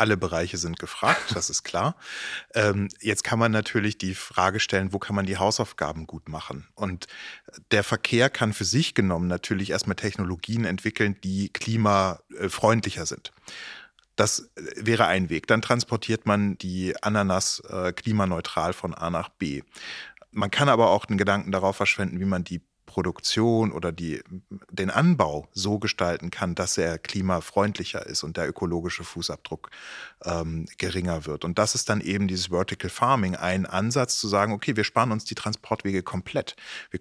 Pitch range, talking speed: 90-110 Hz, 160 wpm